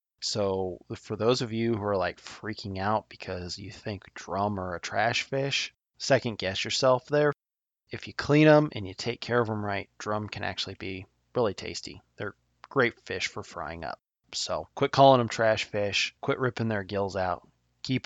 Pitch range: 100-125 Hz